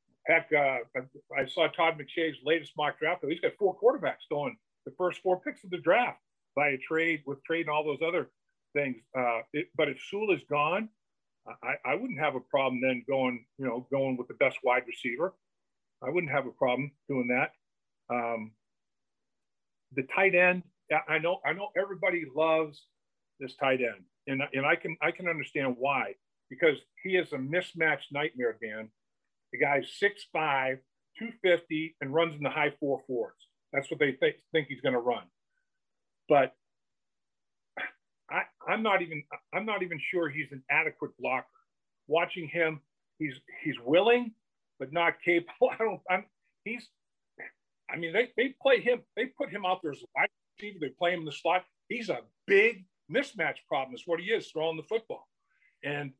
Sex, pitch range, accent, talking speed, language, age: male, 140-190 Hz, American, 175 wpm, English, 50-69